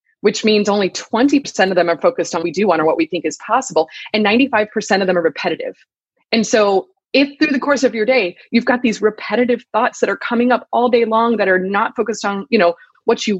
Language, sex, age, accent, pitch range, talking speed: English, female, 20-39, American, 185-245 Hz, 245 wpm